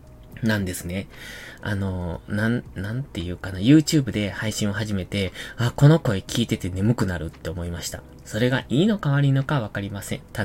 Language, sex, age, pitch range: Japanese, male, 20-39, 95-135 Hz